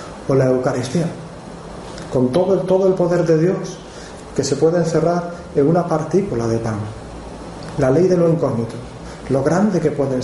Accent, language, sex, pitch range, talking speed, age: Spanish, Spanish, male, 125-165 Hz, 170 wpm, 30-49